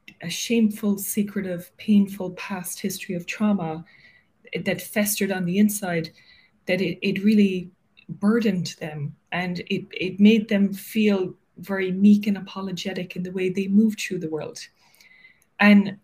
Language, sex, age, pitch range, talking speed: English, female, 20-39, 180-205 Hz, 140 wpm